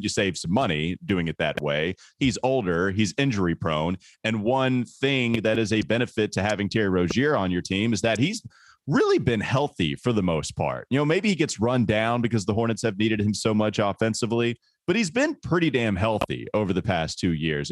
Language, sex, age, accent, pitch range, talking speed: English, male, 30-49, American, 95-125 Hz, 215 wpm